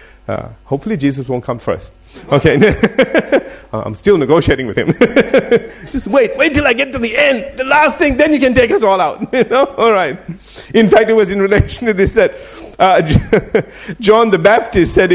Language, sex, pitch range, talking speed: English, male, 130-195 Hz, 195 wpm